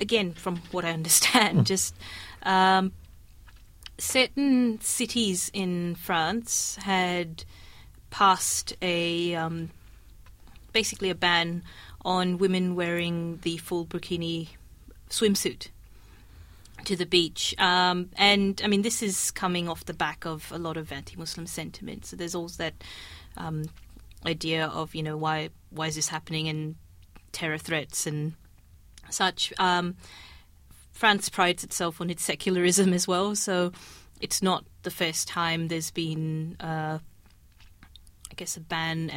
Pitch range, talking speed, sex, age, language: 140-180 Hz, 130 wpm, female, 30-49, English